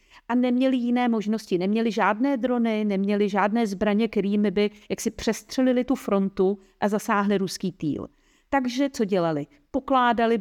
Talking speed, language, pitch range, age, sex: 140 wpm, Czech, 180-215 Hz, 50-69, female